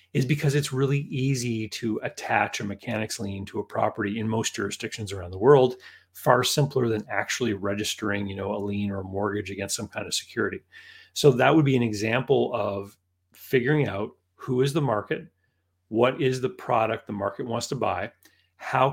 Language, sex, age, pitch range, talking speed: English, male, 40-59, 100-130 Hz, 180 wpm